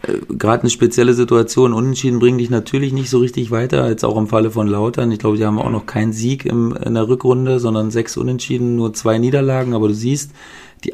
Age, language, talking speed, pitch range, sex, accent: 40-59, German, 215 wpm, 105-125 Hz, male, German